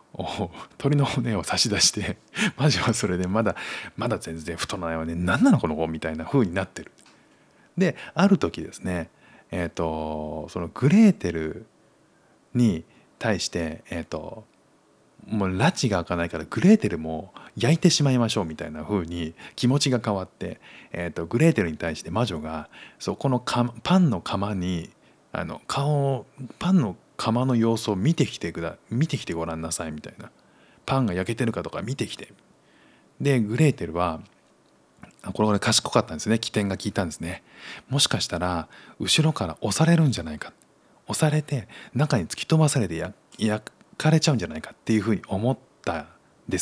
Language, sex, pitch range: Japanese, male, 85-140 Hz